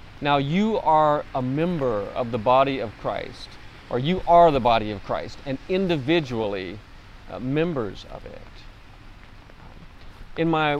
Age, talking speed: 40-59, 135 wpm